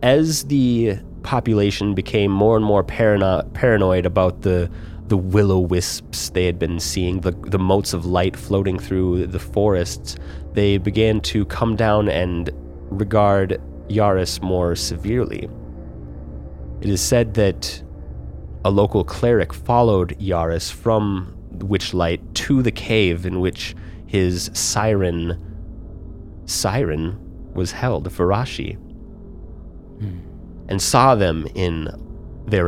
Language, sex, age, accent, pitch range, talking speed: English, male, 30-49, American, 85-105 Hz, 115 wpm